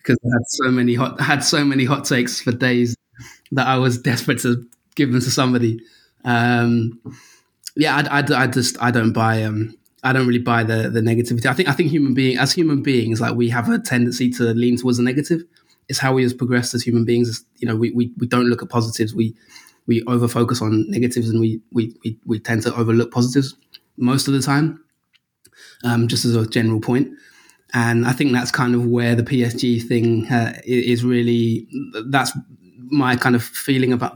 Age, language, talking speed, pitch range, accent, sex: 20-39, English, 205 wpm, 120-135 Hz, British, male